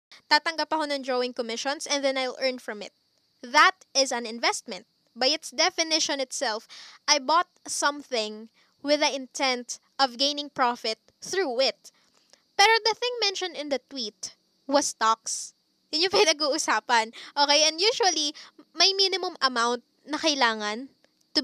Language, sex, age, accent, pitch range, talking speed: Filipino, female, 20-39, native, 245-320 Hz, 145 wpm